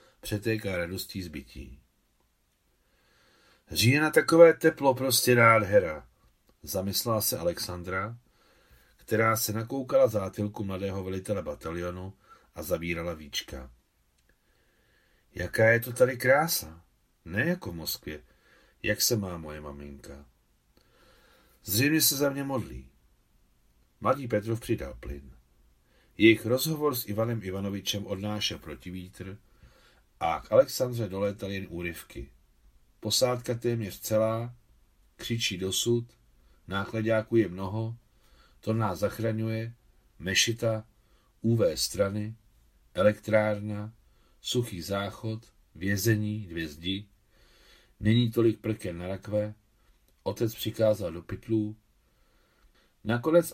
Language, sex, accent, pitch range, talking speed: Czech, male, native, 90-115 Hz, 100 wpm